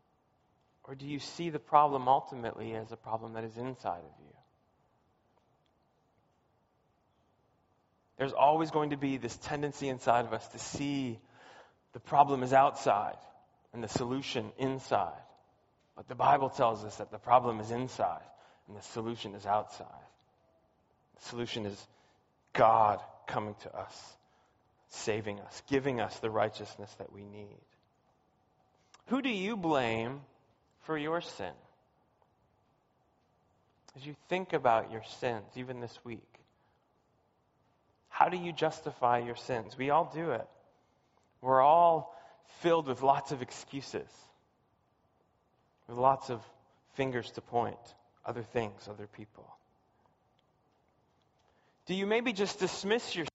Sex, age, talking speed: male, 30-49, 130 wpm